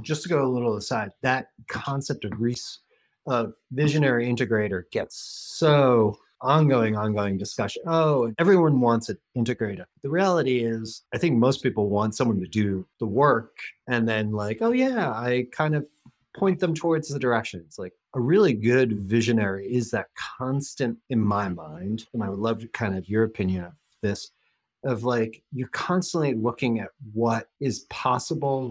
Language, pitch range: English, 105-140 Hz